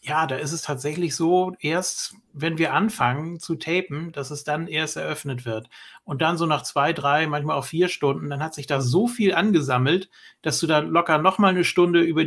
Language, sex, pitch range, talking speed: German, male, 130-170 Hz, 210 wpm